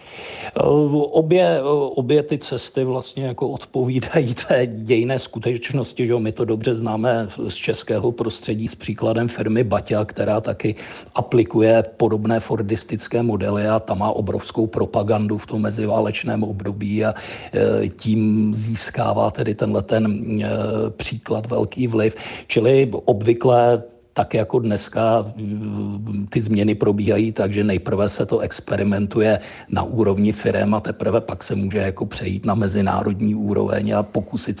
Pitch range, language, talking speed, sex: 105-120 Hz, Czech, 130 wpm, male